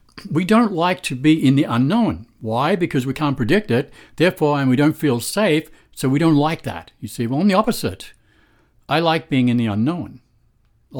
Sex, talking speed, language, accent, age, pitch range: male, 205 wpm, English, American, 60-79, 115-150 Hz